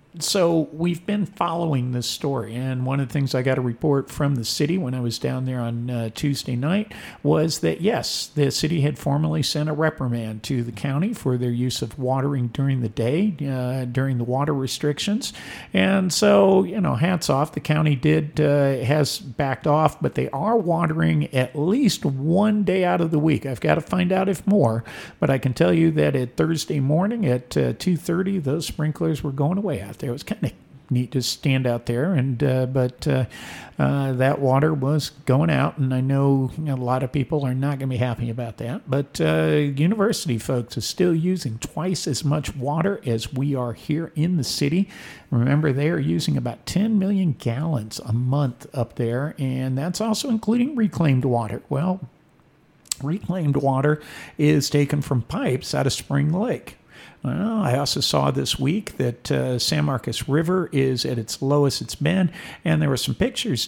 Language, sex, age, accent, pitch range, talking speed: English, male, 50-69, American, 130-165 Hz, 195 wpm